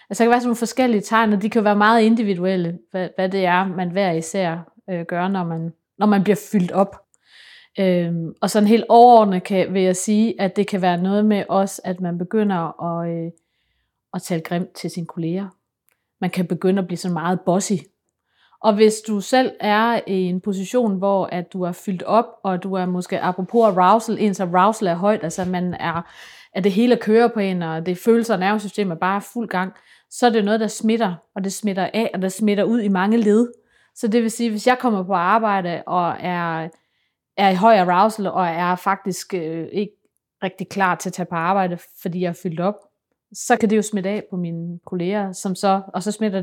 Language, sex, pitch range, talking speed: Danish, female, 180-210 Hz, 215 wpm